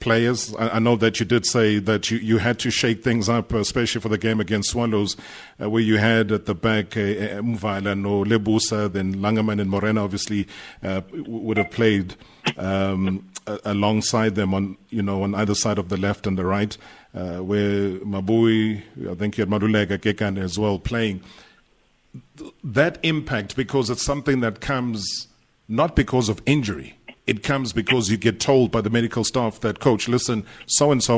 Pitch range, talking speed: 105-125 Hz, 180 wpm